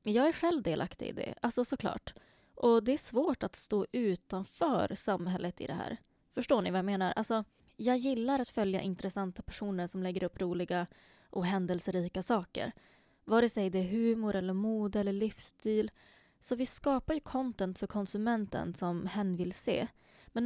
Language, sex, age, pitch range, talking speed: Swedish, female, 20-39, 185-235 Hz, 175 wpm